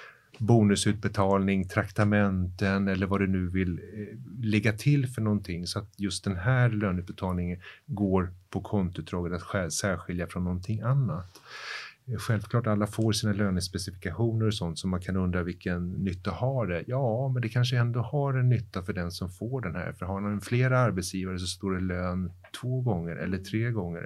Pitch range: 90-115 Hz